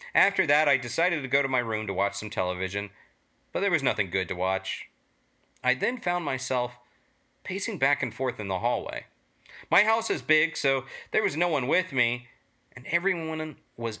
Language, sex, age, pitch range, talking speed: English, male, 40-59, 115-165 Hz, 195 wpm